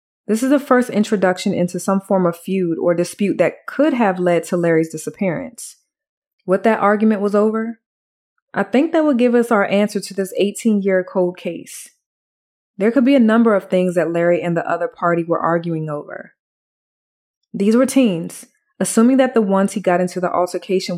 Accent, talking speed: American, 185 wpm